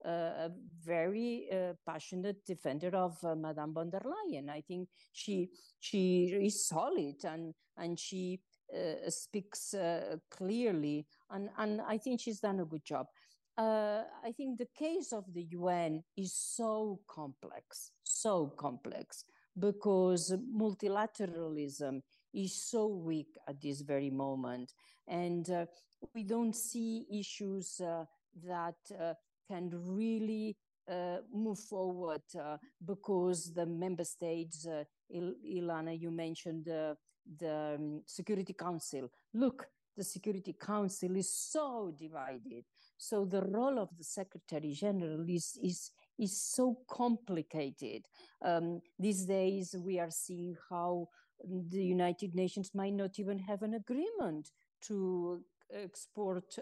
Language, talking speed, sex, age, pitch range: English, 125 wpm, female, 50-69, 165-205 Hz